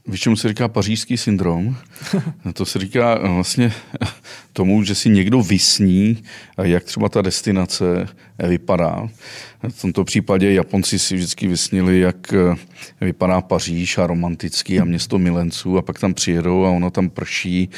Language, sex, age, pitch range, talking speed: Czech, male, 40-59, 90-105 Hz, 145 wpm